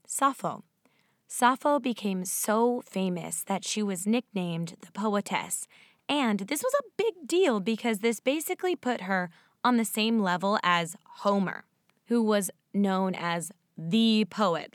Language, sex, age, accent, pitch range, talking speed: English, female, 10-29, American, 185-240 Hz, 140 wpm